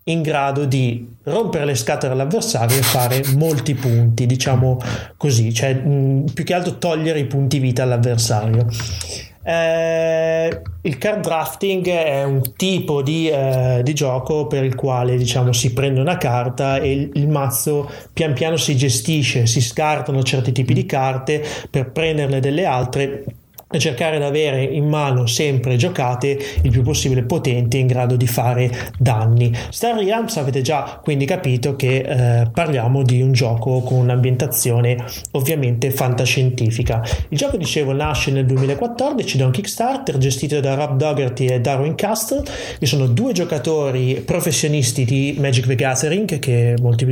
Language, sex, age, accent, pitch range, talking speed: Italian, male, 30-49, native, 125-150 Hz, 150 wpm